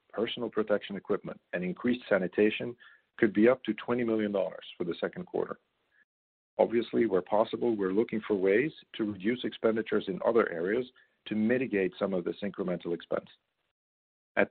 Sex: male